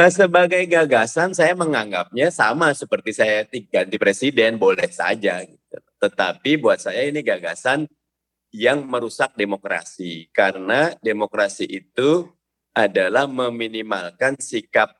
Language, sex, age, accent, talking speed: Indonesian, male, 30-49, native, 105 wpm